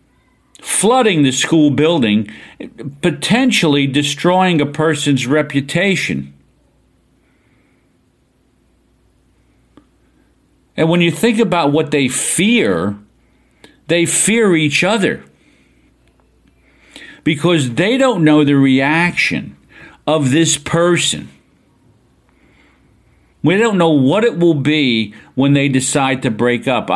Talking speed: 95 wpm